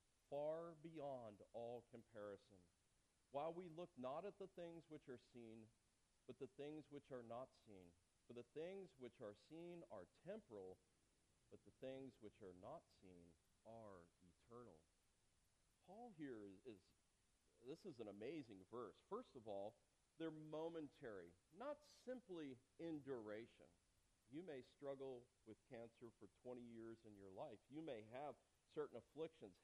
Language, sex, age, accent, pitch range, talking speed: English, male, 40-59, American, 105-160 Hz, 145 wpm